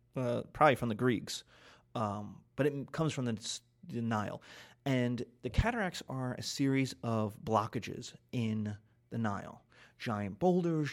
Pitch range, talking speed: 115-145 Hz, 145 wpm